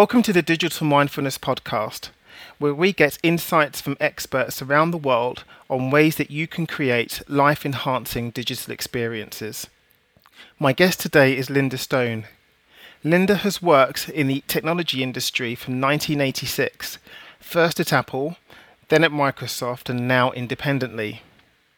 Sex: male